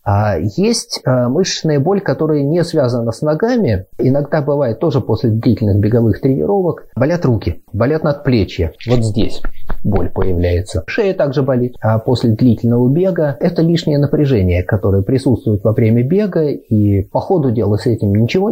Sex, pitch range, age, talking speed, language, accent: male, 105-140 Hz, 30-49, 150 wpm, Russian, native